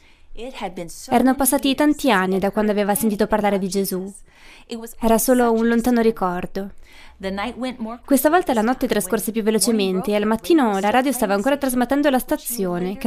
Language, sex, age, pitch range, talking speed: Italian, female, 20-39, 200-255 Hz, 155 wpm